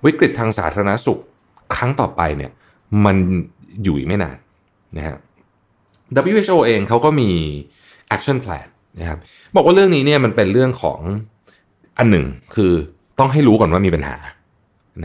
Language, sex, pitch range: Thai, male, 80-110 Hz